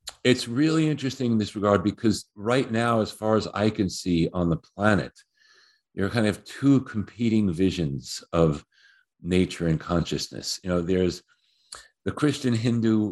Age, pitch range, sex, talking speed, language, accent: 50-69, 85-115 Hz, male, 155 wpm, English, American